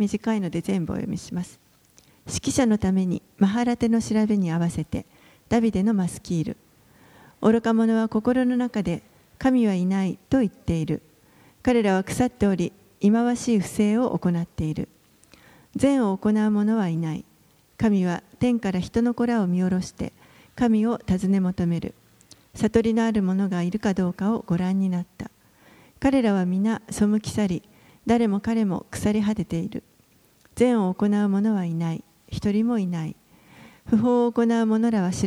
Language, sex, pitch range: Japanese, female, 185-225 Hz